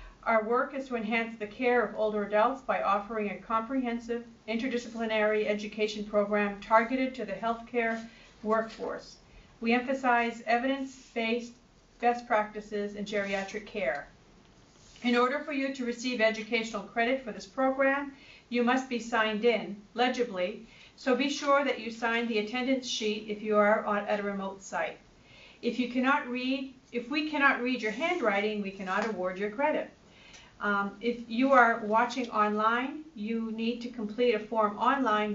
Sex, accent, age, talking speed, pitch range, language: female, American, 40-59, 155 wpm, 215-245 Hz, English